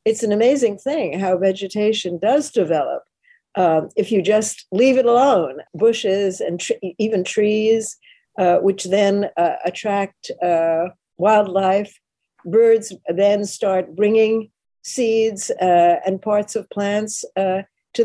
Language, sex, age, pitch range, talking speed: English, female, 60-79, 175-225 Hz, 125 wpm